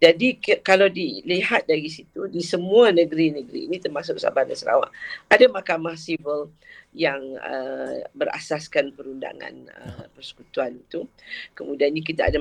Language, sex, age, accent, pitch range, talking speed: English, female, 40-59, Malaysian, 145-180 Hz, 130 wpm